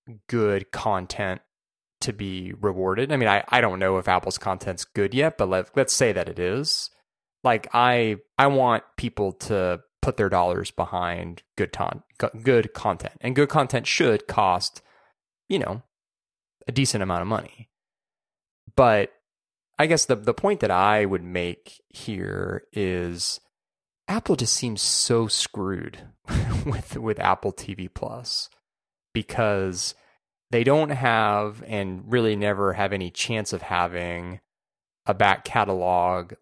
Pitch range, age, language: 90-110 Hz, 20-39, English